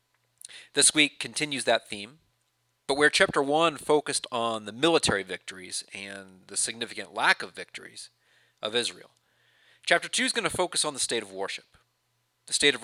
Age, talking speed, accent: 30-49, 170 wpm, American